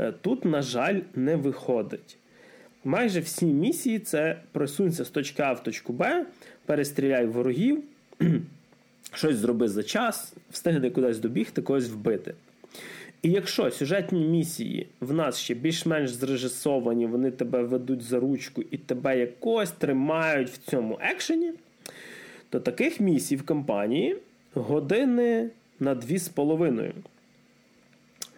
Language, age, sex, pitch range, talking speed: Ukrainian, 20-39, male, 125-175 Hz, 125 wpm